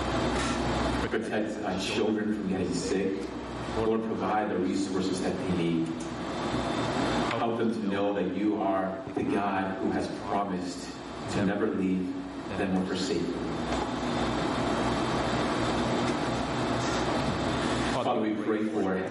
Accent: American